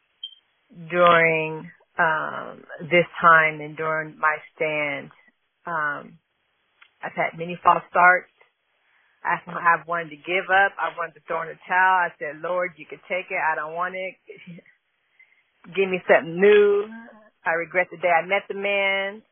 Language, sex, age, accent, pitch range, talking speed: English, female, 40-59, American, 170-200 Hz, 150 wpm